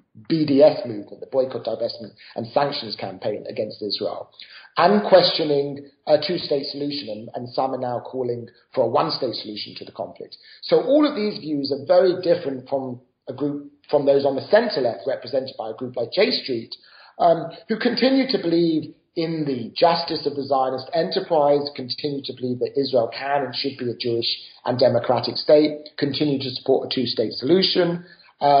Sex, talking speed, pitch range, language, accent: male, 175 wpm, 125-165 Hz, English, British